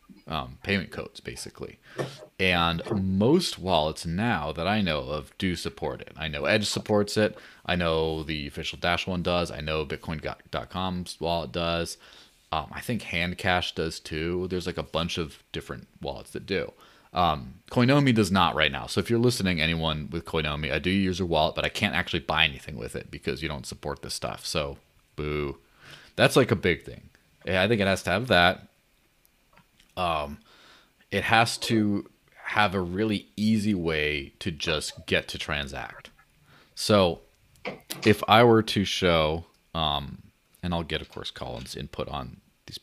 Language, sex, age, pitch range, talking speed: English, male, 30-49, 80-100 Hz, 170 wpm